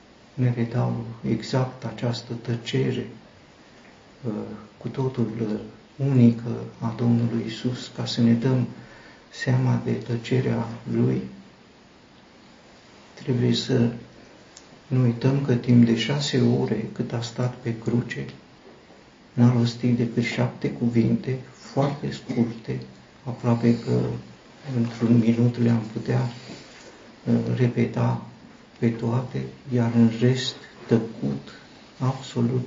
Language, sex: Romanian, male